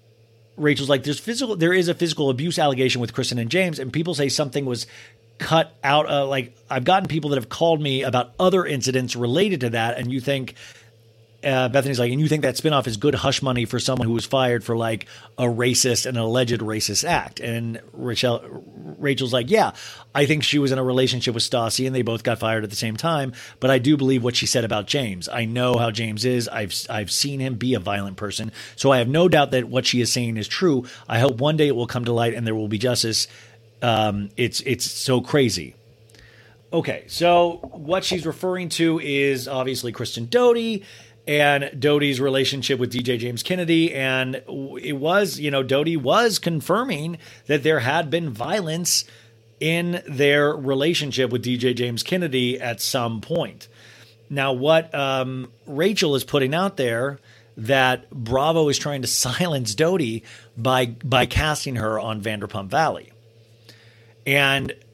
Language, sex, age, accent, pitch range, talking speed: English, male, 40-59, American, 115-145 Hz, 190 wpm